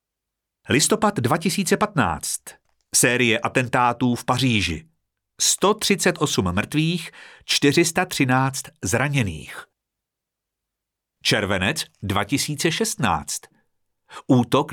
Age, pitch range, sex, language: 50-69, 105-145 Hz, male, Czech